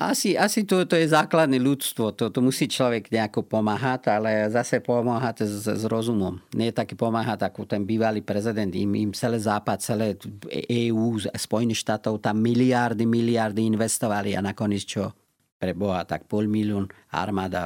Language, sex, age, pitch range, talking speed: Slovak, male, 40-59, 100-120 Hz, 155 wpm